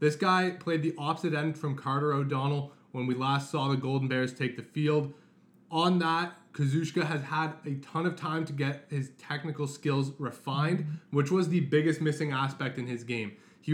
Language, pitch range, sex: English, 140-175 Hz, male